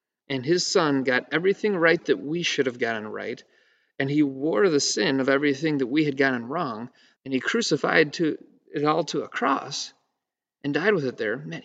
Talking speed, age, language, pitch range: 200 wpm, 40-59, English, 130-170 Hz